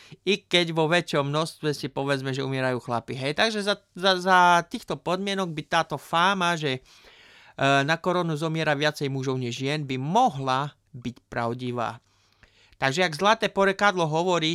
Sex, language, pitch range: male, Slovak, 130-170 Hz